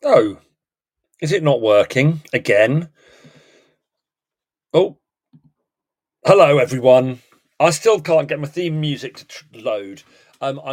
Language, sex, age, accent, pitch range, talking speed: English, male, 40-59, British, 130-165 Hz, 105 wpm